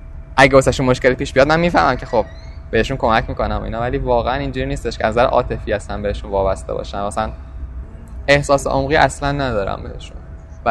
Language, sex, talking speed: Persian, male, 180 wpm